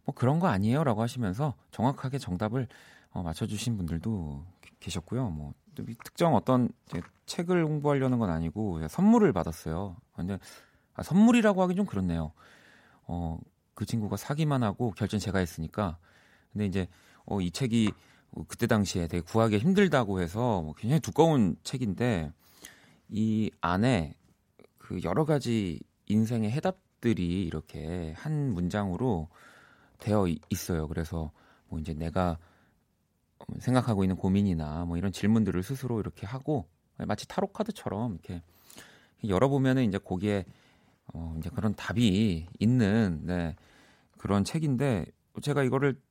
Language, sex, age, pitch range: Korean, male, 30-49, 85-125 Hz